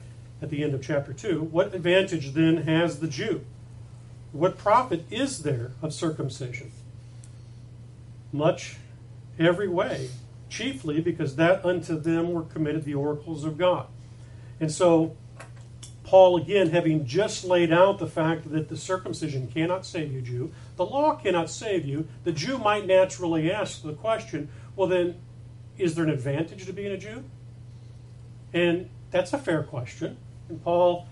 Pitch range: 120-175 Hz